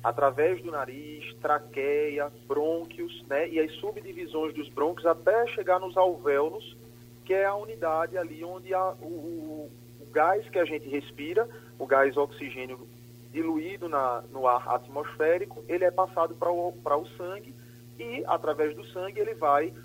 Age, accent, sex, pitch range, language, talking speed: 30-49, Brazilian, male, 125-175 Hz, Portuguese, 155 wpm